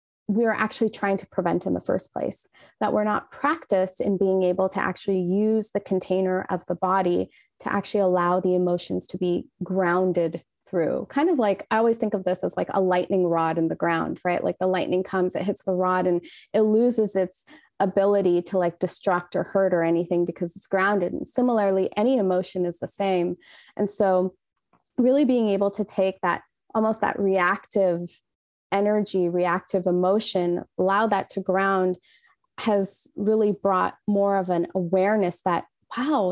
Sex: female